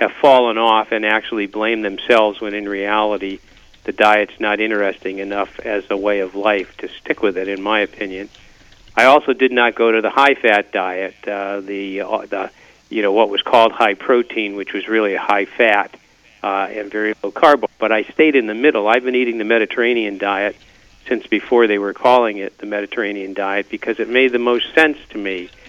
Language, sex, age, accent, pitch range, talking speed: English, male, 50-69, American, 100-115 Hz, 195 wpm